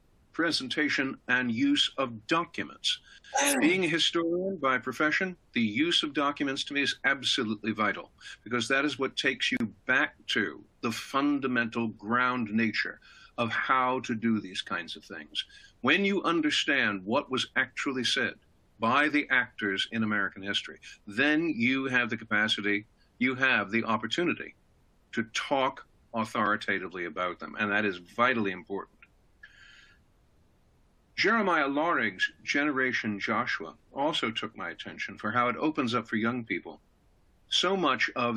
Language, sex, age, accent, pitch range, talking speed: English, male, 60-79, American, 110-170 Hz, 140 wpm